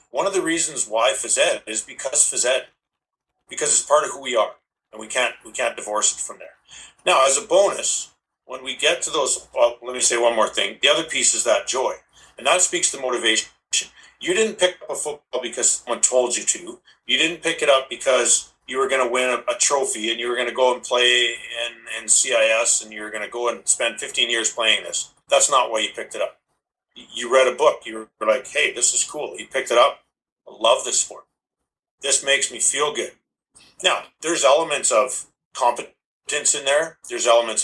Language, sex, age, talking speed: English, male, 50-69, 225 wpm